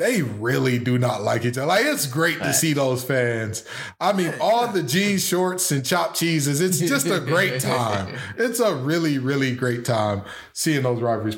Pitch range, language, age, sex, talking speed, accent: 140-180 Hz, English, 20-39, male, 195 wpm, American